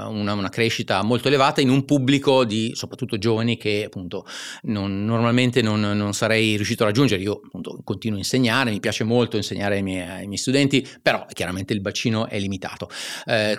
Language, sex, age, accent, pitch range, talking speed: Italian, male, 30-49, native, 110-140 Hz, 185 wpm